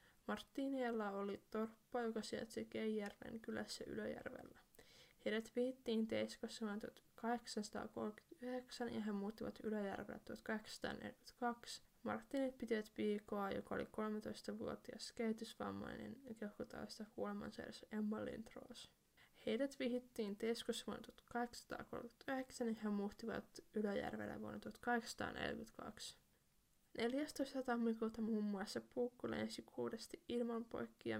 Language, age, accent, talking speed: Finnish, 10-29, native, 100 wpm